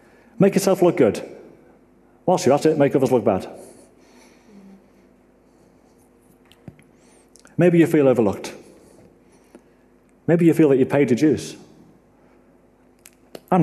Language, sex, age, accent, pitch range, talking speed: English, male, 40-59, British, 120-150 Hz, 110 wpm